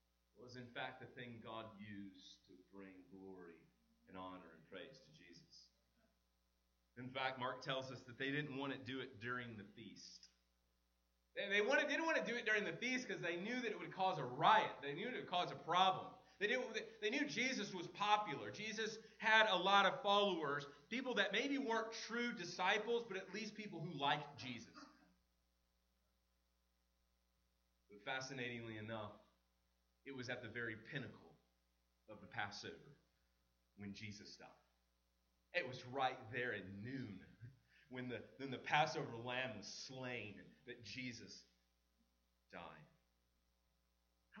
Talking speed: 150 wpm